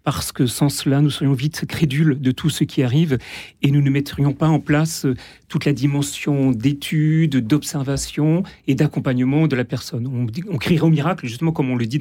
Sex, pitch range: male, 140-170 Hz